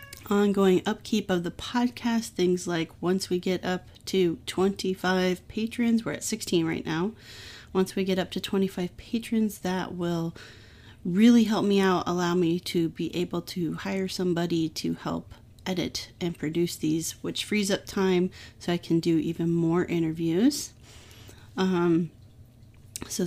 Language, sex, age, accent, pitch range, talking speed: English, female, 30-49, American, 165-200 Hz, 150 wpm